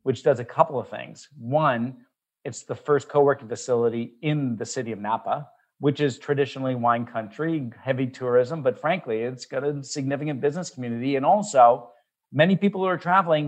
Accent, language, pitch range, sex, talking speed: American, English, 125-155 Hz, male, 175 wpm